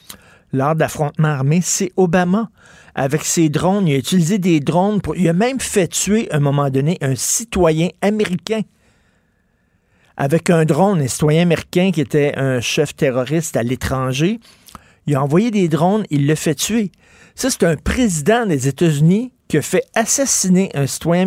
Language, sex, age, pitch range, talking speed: French, male, 50-69, 135-180 Hz, 170 wpm